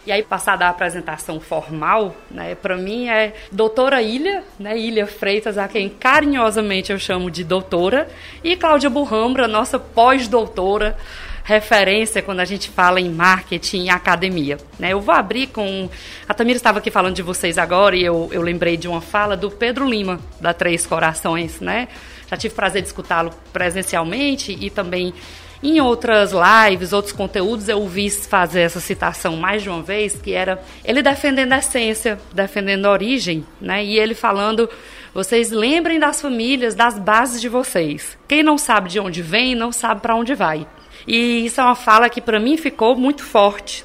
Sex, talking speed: female, 175 wpm